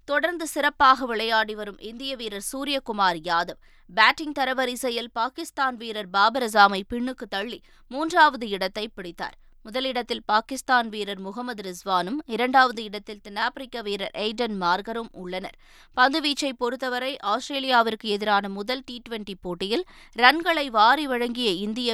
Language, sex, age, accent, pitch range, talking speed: Tamil, female, 20-39, native, 205-260 Hz, 115 wpm